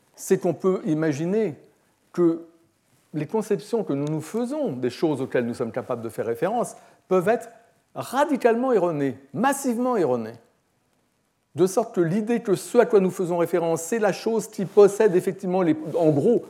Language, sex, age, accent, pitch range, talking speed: French, male, 60-79, French, 135-200 Hz, 165 wpm